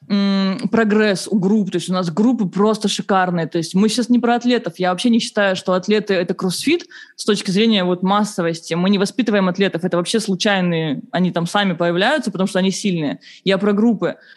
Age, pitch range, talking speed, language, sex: 20-39, 195-245 Hz, 195 wpm, Russian, female